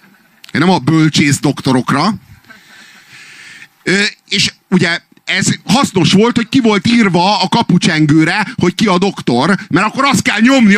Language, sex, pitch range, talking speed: Hungarian, male, 135-190 Hz, 135 wpm